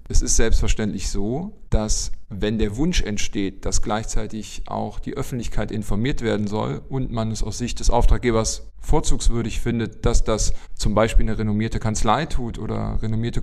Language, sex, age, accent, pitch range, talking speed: German, male, 40-59, German, 110-130 Hz, 160 wpm